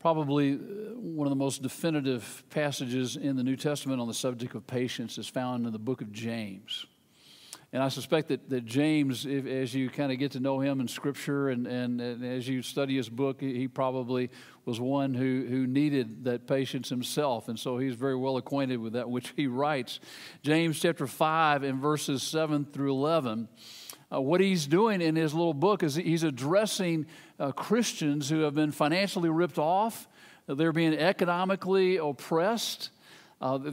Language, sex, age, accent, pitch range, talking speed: English, male, 50-69, American, 135-185 Hz, 180 wpm